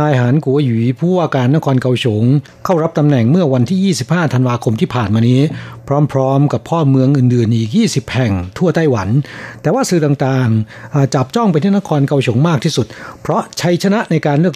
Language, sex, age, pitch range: Thai, male, 60-79, 130-165 Hz